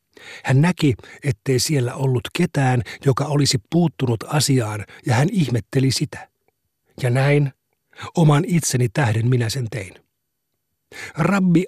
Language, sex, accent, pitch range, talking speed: Finnish, male, native, 125-155 Hz, 120 wpm